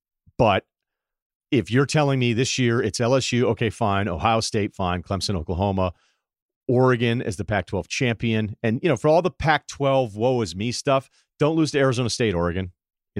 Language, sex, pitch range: English, male, 100-120 Hz